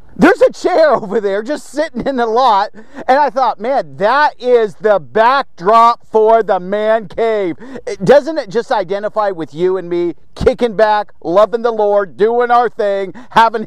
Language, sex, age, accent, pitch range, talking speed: English, male, 40-59, American, 220-295 Hz, 170 wpm